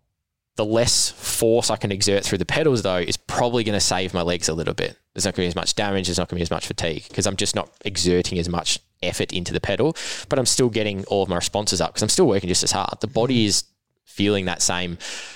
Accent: Australian